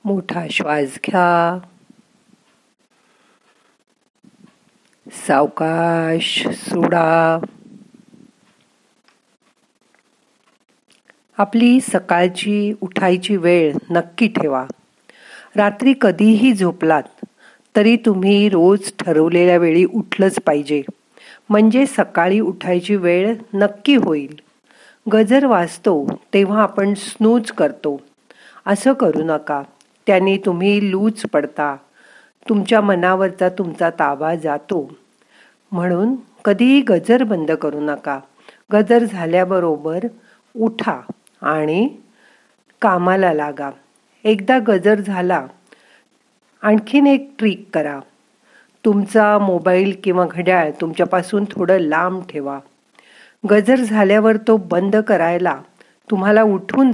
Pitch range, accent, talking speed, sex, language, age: 170-220 Hz, native, 65 wpm, female, Marathi, 50-69